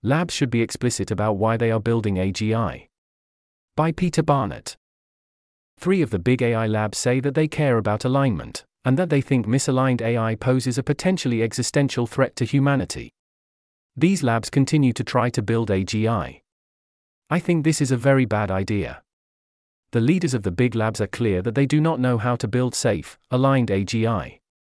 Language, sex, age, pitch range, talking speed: English, male, 40-59, 105-135 Hz, 175 wpm